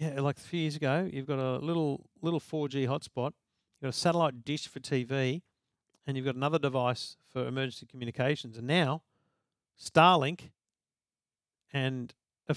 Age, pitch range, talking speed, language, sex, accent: 50-69, 120-150 Hz, 160 wpm, English, male, Australian